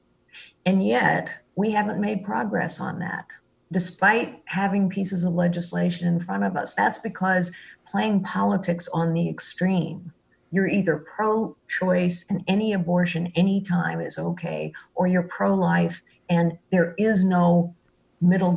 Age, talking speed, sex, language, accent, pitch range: 50-69, 135 wpm, female, English, American, 165-195 Hz